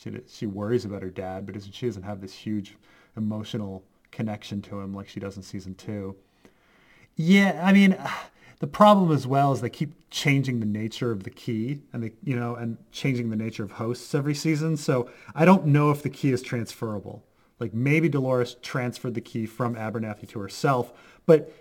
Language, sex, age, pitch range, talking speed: English, male, 30-49, 110-140 Hz, 195 wpm